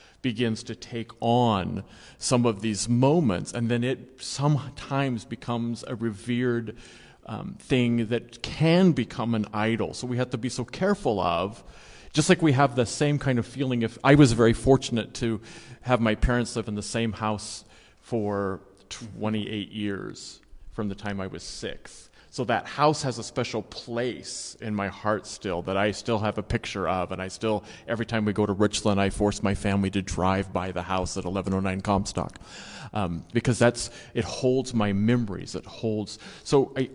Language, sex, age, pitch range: English, male, 40-59, 105-130 Hz